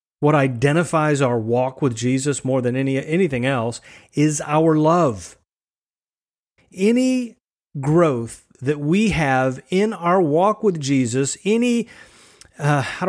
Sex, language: male, English